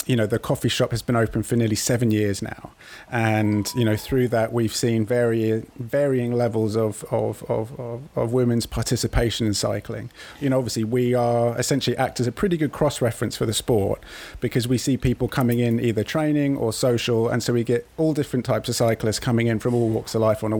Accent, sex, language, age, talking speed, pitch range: British, male, English, 30-49, 220 wpm, 110-130 Hz